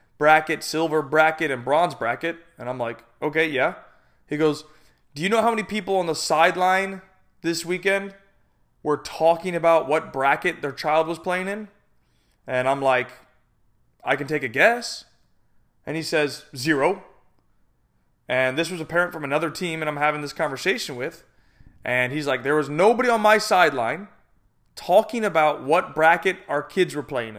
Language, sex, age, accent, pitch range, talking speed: English, male, 30-49, American, 140-175 Hz, 170 wpm